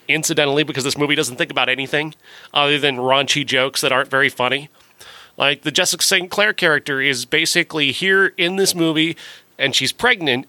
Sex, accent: male, American